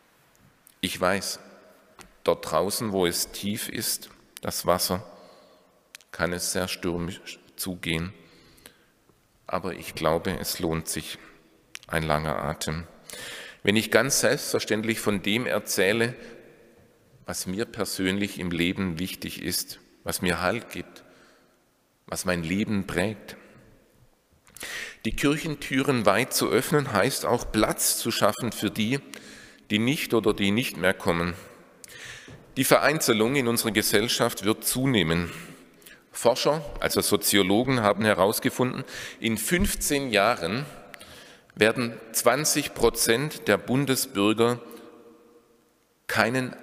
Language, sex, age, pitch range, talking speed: German, male, 40-59, 90-115 Hz, 110 wpm